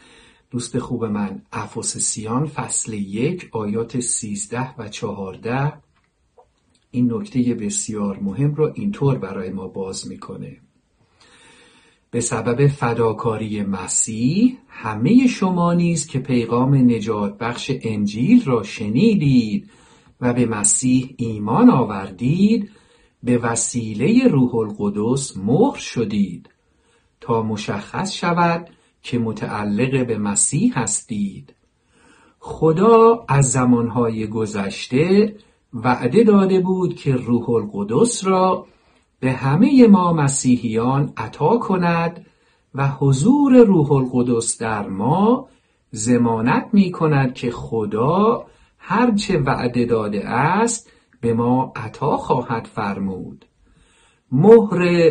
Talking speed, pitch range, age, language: 100 wpm, 115-185 Hz, 50-69, Persian